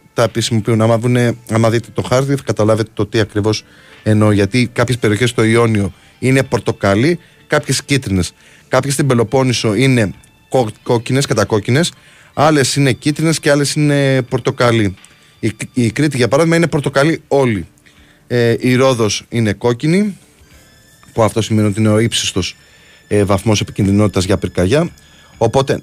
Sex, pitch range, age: male, 105-125 Hz, 20-39